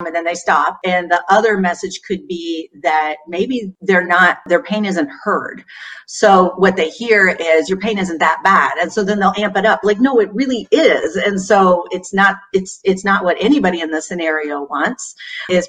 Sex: female